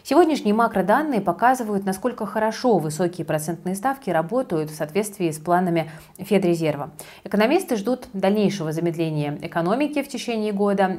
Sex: female